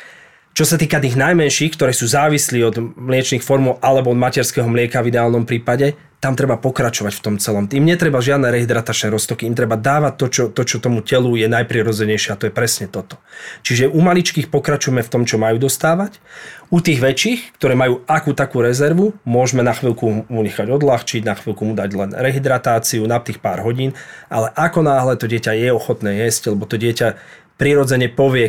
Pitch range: 115-135 Hz